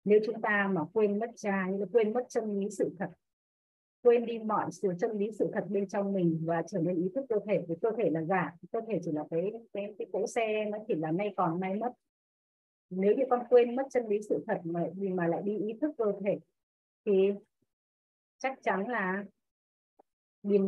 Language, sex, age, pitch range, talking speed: Vietnamese, female, 20-39, 185-230 Hz, 220 wpm